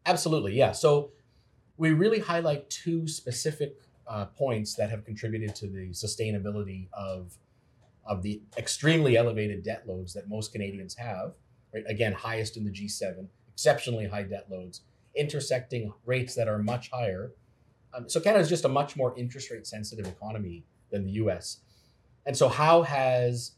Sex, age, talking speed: male, 30-49, 160 wpm